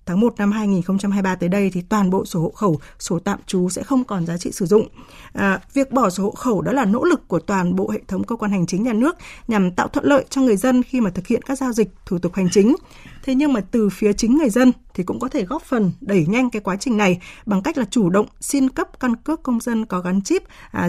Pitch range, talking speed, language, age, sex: 190-245 Hz, 275 wpm, Vietnamese, 20-39, female